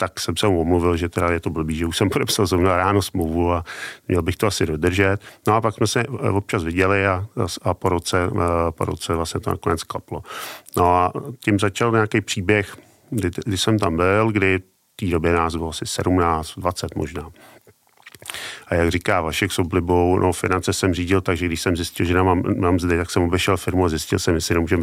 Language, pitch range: Czech, 85-105 Hz